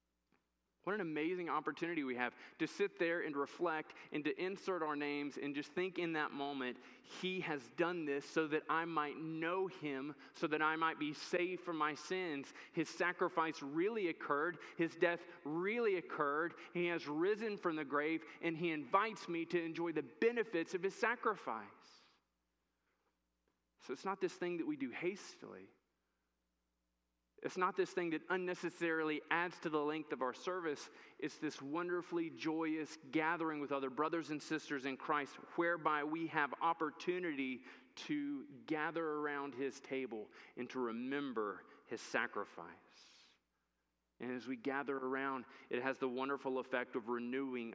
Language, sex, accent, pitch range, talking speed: English, male, American, 125-170 Hz, 160 wpm